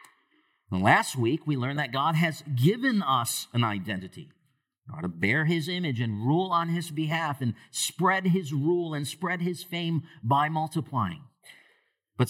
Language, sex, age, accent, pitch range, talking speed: English, male, 50-69, American, 135-180 Hz, 160 wpm